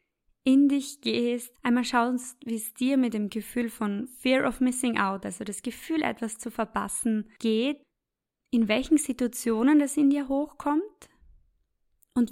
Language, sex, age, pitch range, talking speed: German, female, 20-39, 215-260 Hz, 150 wpm